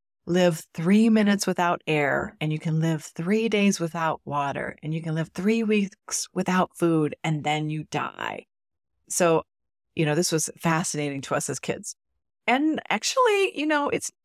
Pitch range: 160-225 Hz